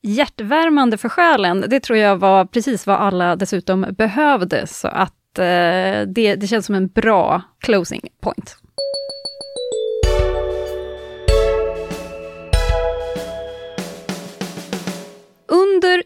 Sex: female